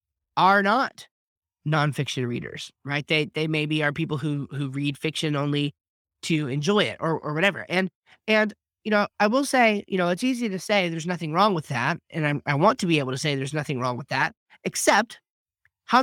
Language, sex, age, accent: English, male, 30-49, American